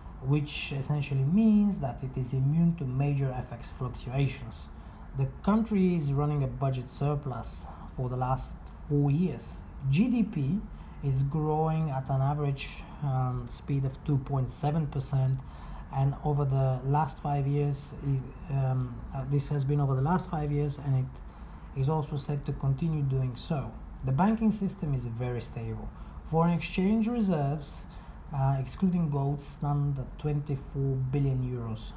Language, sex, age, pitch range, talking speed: English, male, 30-49, 125-145 Hz, 140 wpm